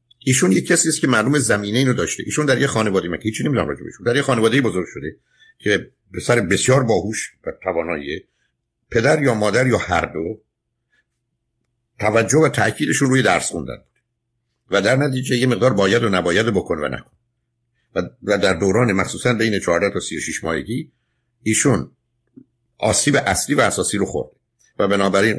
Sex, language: male, Persian